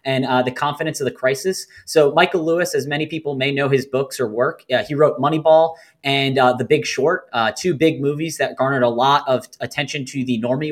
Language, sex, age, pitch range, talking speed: English, male, 20-39, 130-155 Hz, 235 wpm